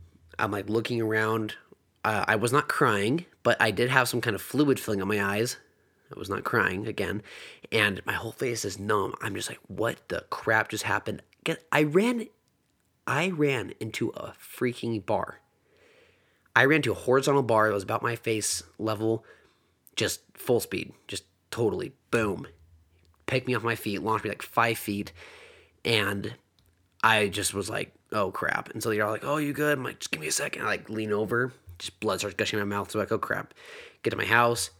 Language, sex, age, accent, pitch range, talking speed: English, male, 30-49, American, 100-120 Hz, 200 wpm